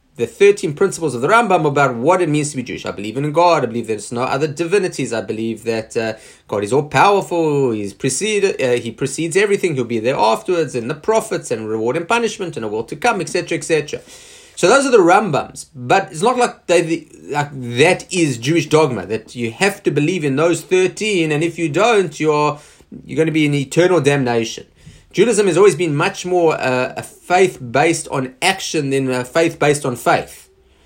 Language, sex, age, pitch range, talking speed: English, male, 30-49, 125-170 Hz, 210 wpm